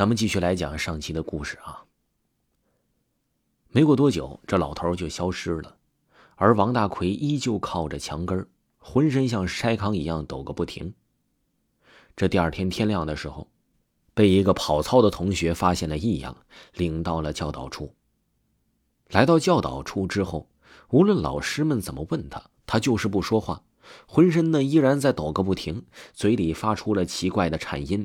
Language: Chinese